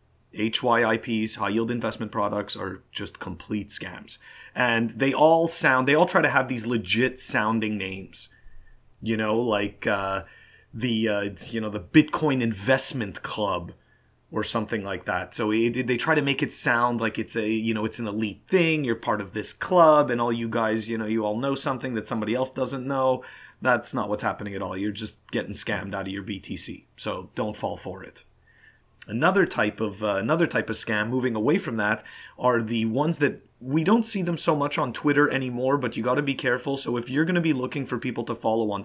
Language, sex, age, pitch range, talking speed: English, male, 30-49, 110-130 Hz, 200 wpm